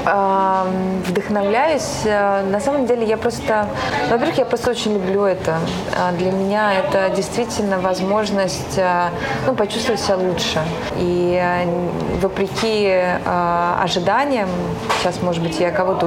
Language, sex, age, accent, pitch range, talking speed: Russian, female, 20-39, native, 170-200 Hz, 110 wpm